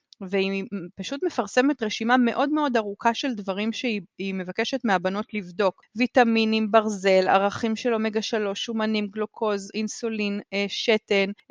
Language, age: Hebrew, 20-39